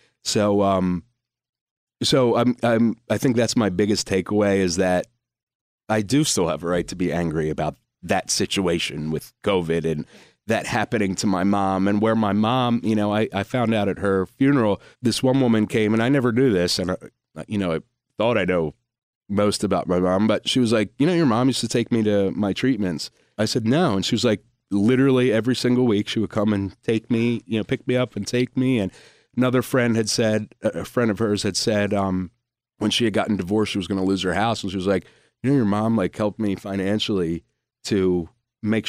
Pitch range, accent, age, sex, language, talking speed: 100-125 Hz, American, 30-49, male, English, 225 wpm